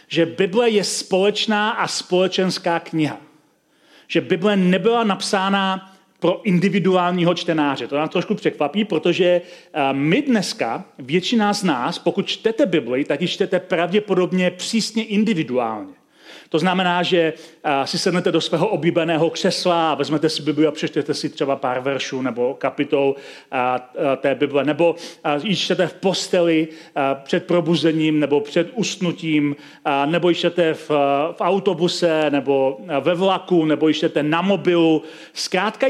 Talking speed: 140 wpm